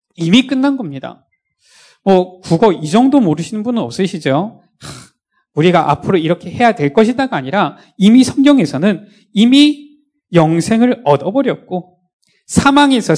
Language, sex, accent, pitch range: Korean, male, native, 170-245 Hz